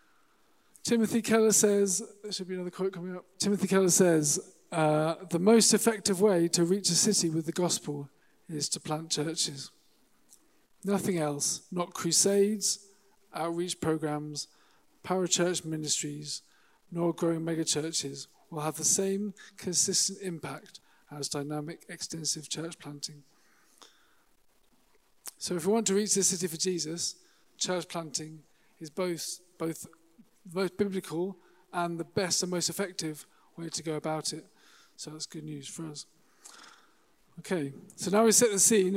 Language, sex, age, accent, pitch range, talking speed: English, male, 40-59, British, 160-195 Hz, 145 wpm